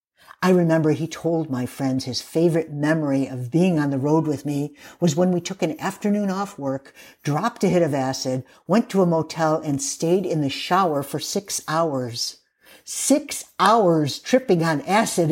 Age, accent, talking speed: 50-69, American, 180 wpm